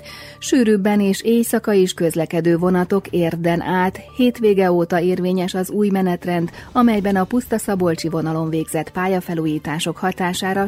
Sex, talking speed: female, 125 wpm